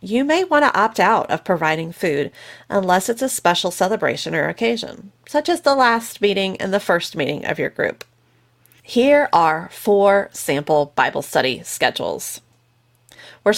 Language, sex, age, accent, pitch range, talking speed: English, female, 30-49, American, 160-220 Hz, 155 wpm